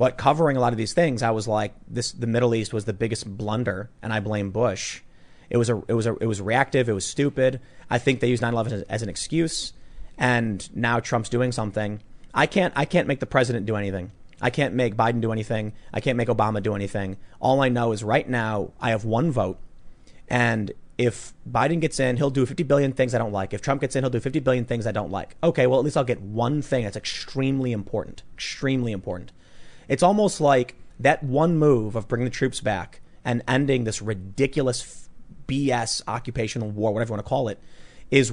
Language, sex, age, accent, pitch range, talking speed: English, male, 30-49, American, 110-135 Hz, 220 wpm